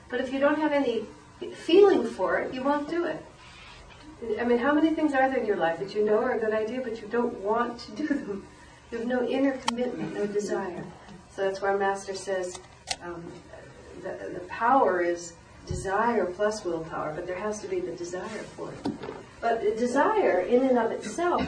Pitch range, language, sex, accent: 190-250 Hz, English, female, American